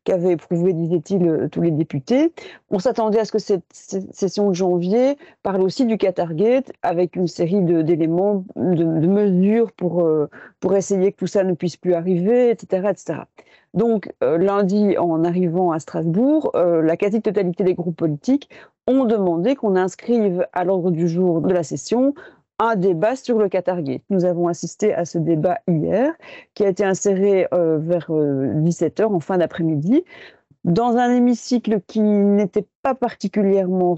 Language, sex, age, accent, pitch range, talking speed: French, female, 40-59, French, 175-220 Hz, 165 wpm